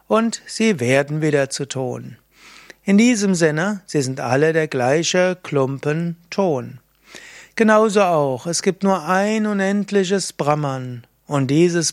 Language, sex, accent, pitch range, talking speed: German, male, German, 145-180 Hz, 125 wpm